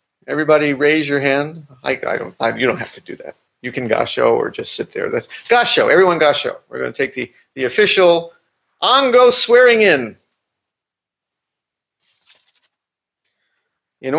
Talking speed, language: 150 wpm, English